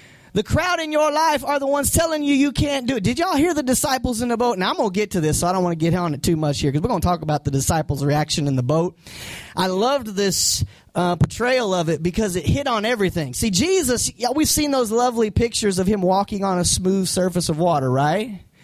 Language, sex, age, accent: English, male, 20-39, American